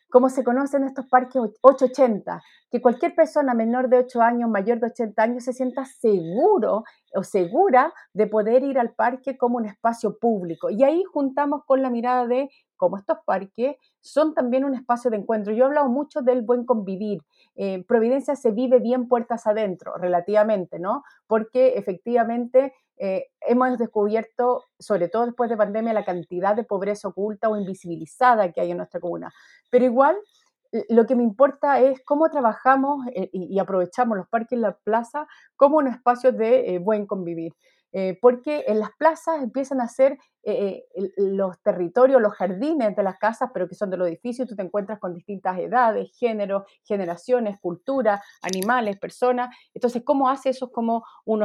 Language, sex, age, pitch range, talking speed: Spanish, female, 40-59, 200-265 Hz, 170 wpm